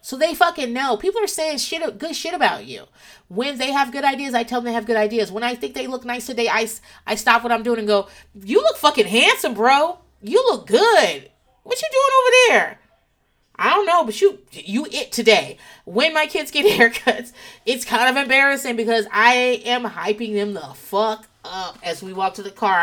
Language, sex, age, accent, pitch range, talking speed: English, female, 30-49, American, 205-275 Hz, 220 wpm